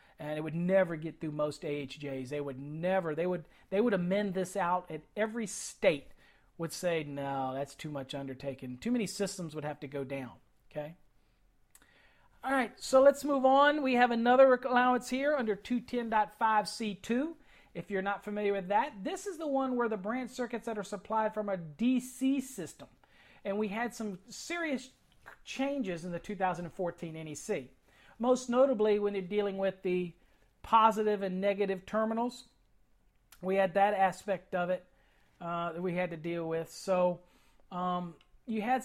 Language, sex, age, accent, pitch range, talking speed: English, male, 40-59, American, 175-230 Hz, 170 wpm